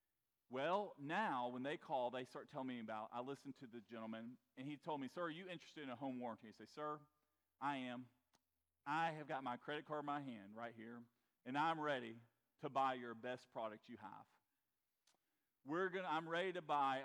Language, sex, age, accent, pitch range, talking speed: English, male, 40-59, American, 120-190 Hz, 210 wpm